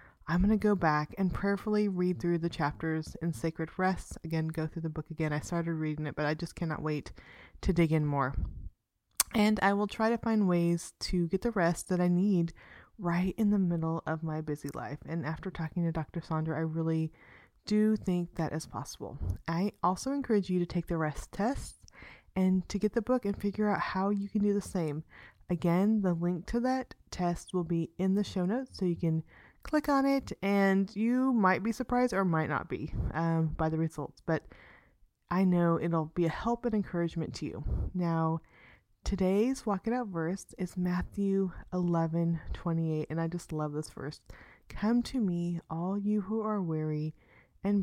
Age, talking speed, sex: 20-39, 200 wpm, female